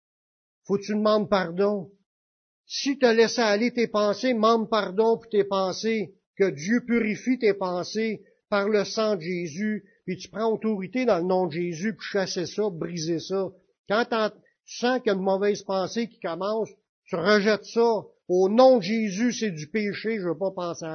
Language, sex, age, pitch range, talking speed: French, male, 60-79, 180-220 Hz, 185 wpm